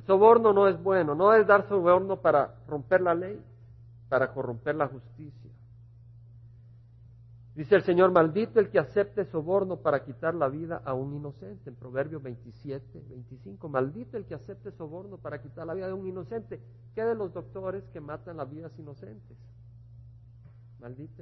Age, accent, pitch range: 50-69, Mexican, 115-185 Hz